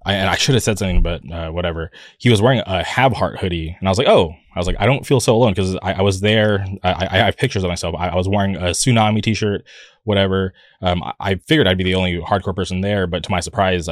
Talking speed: 275 wpm